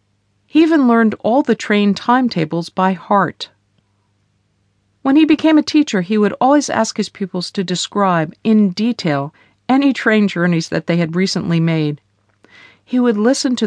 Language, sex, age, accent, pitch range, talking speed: English, female, 50-69, American, 155-225 Hz, 160 wpm